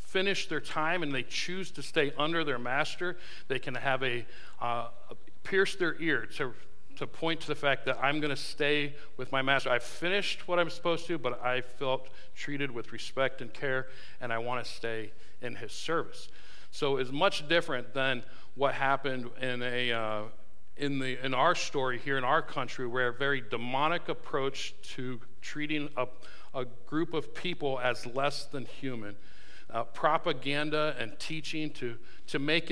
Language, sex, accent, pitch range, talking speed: English, male, American, 125-150 Hz, 180 wpm